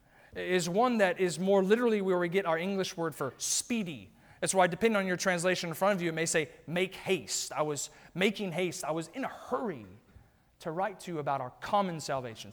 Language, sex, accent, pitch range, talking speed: English, male, American, 140-185 Hz, 220 wpm